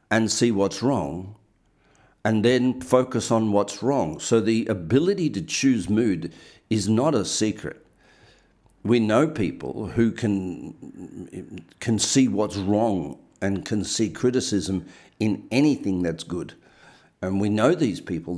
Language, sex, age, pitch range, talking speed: English, male, 50-69, 100-120 Hz, 135 wpm